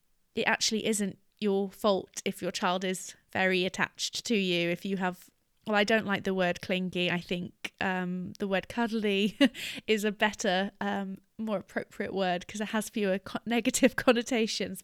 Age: 20-39